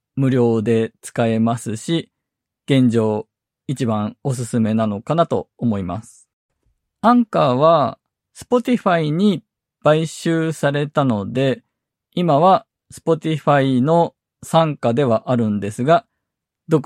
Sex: male